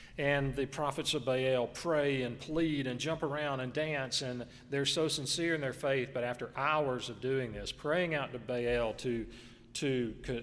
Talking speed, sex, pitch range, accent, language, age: 190 wpm, male, 120-145 Hz, American, English, 40-59